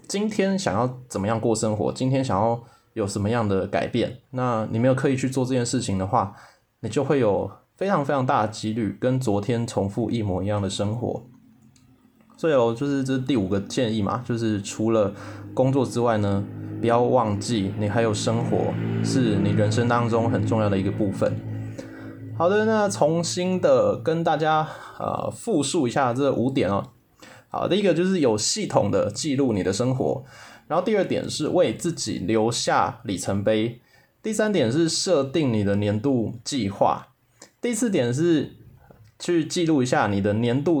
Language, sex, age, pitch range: Chinese, male, 20-39, 105-135 Hz